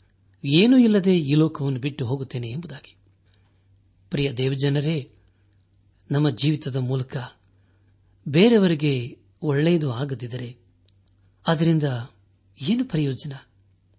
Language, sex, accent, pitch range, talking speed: Kannada, male, native, 95-150 Hz, 75 wpm